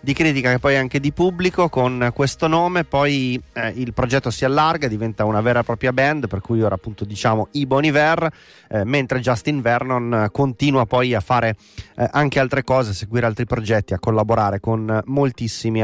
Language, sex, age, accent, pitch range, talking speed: Italian, male, 30-49, native, 110-135 Hz, 195 wpm